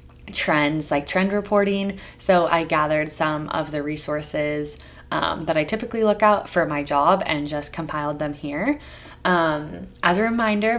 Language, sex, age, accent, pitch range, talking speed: English, female, 20-39, American, 150-185 Hz, 160 wpm